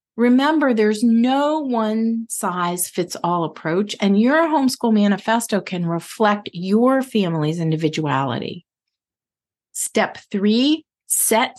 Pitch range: 180-250 Hz